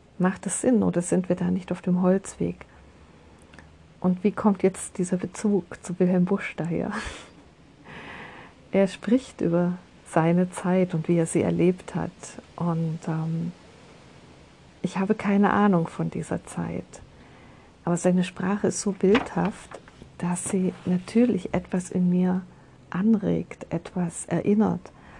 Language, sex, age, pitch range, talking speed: German, female, 50-69, 170-195 Hz, 135 wpm